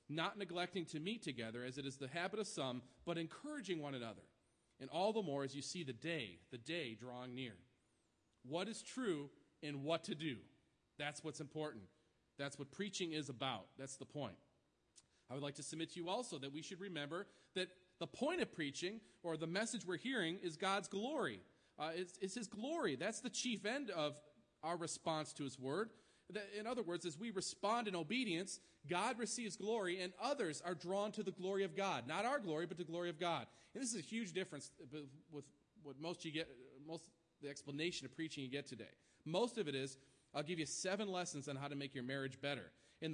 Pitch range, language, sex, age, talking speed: 145-195 Hz, English, male, 40-59, 210 wpm